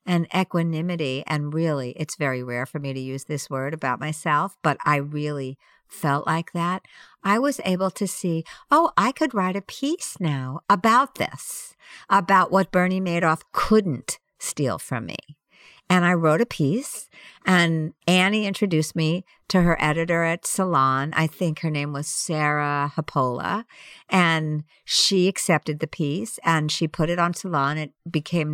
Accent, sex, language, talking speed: American, female, English, 160 wpm